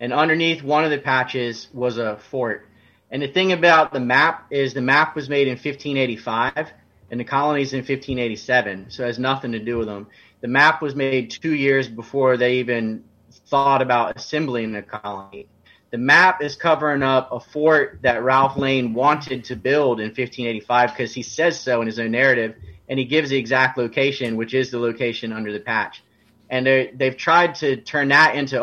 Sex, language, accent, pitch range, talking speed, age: male, English, American, 115-140 Hz, 195 wpm, 30-49